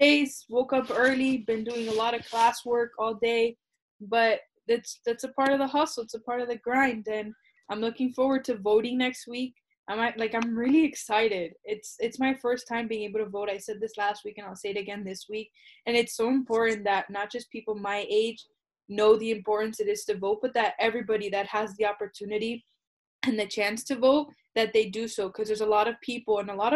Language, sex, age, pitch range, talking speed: English, female, 10-29, 210-240 Hz, 230 wpm